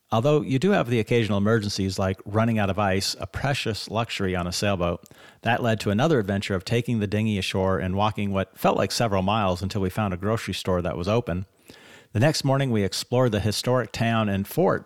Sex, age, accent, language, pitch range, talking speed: male, 50-69, American, English, 95-120 Hz, 220 wpm